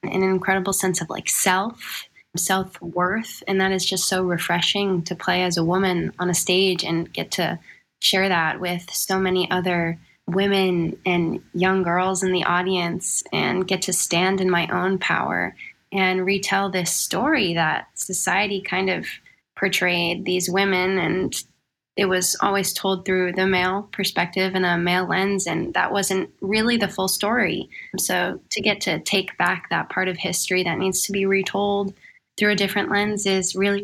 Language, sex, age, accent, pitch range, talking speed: English, female, 10-29, American, 180-195 Hz, 175 wpm